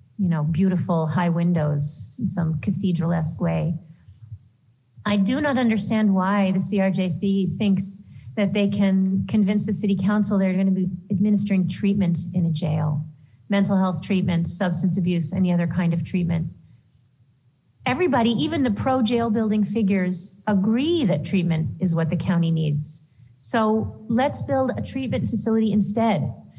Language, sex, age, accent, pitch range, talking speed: English, female, 40-59, American, 165-220 Hz, 145 wpm